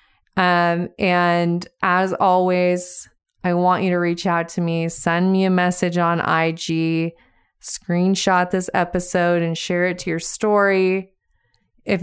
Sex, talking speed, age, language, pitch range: female, 140 wpm, 20-39, English, 175-200 Hz